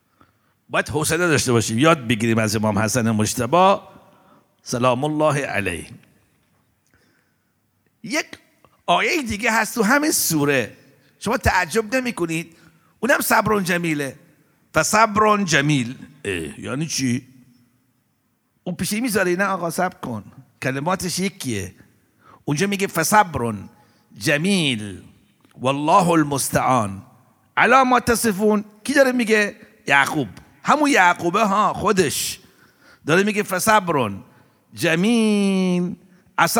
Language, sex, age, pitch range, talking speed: Arabic, male, 60-79, 135-220 Hz, 75 wpm